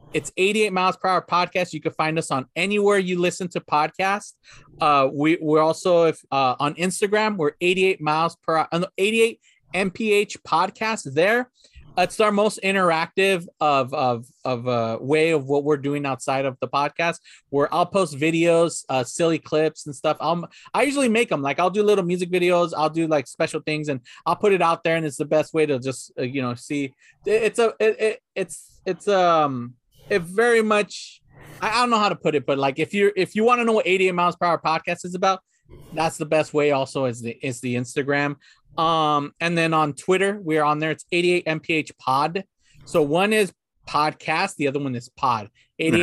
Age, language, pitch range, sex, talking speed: 30-49, English, 145-185 Hz, male, 210 wpm